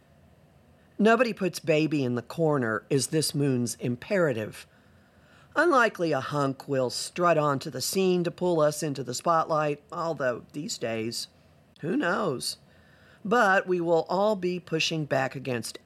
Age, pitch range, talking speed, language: 40-59, 130-190 Hz, 140 wpm, English